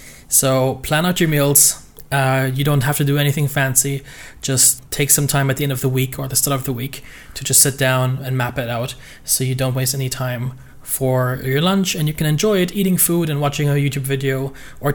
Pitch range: 130-150 Hz